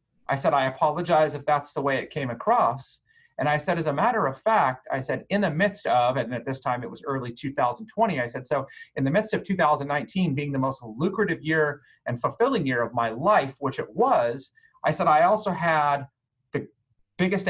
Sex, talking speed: male, 215 wpm